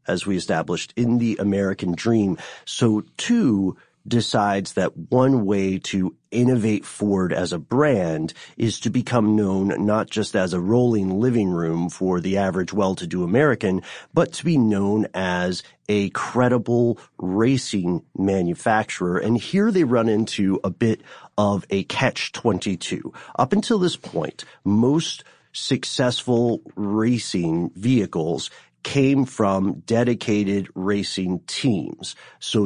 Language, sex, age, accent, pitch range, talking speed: English, male, 40-59, American, 95-120 Hz, 125 wpm